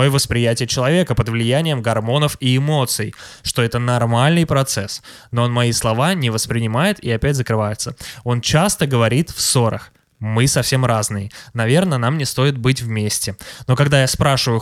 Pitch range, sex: 115-145 Hz, male